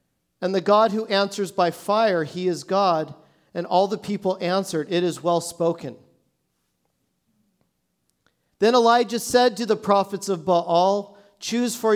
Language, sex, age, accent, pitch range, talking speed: English, male, 40-59, American, 180-220 Hz, 145 wpm